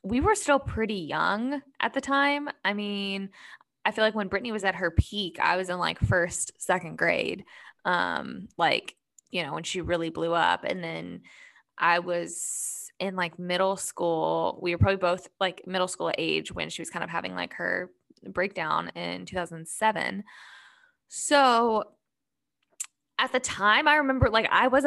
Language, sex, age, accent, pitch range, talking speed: English, female, 10-29, American, 175-230 Hz, 170 wpm